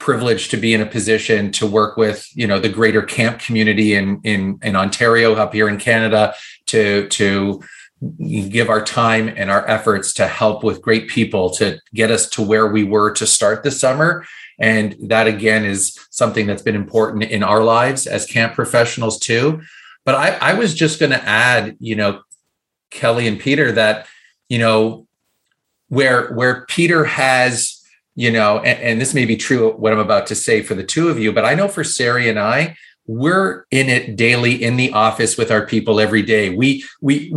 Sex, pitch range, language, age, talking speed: male, 110-135 Hz, English, 30-49, 195 wpm